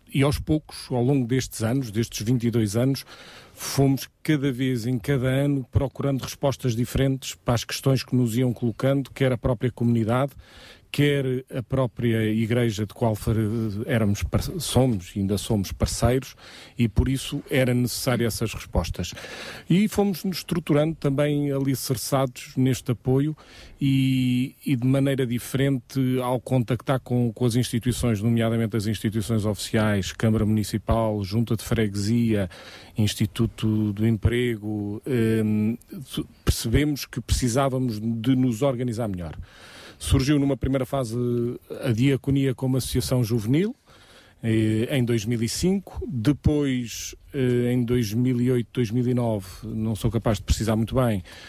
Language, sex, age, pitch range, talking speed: Portuguese, male, 40-59, 110-135 Hz, 125 wpm